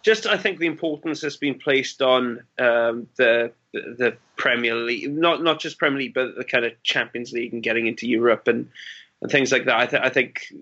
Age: 20-39